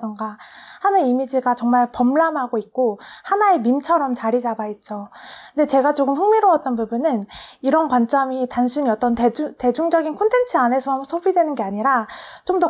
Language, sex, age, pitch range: Korean, female, 20-39, 235-335 Hz